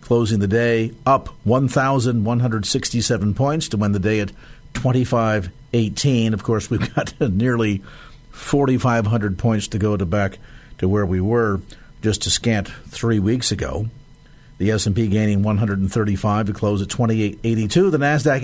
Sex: male